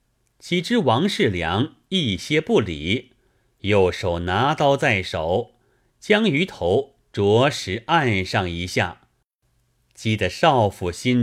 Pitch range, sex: 100-130 Hz, male